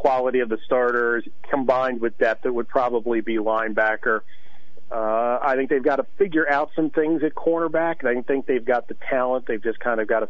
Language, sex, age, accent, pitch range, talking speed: English, male, 40-59, American, 115-150 Hz, 210 wpm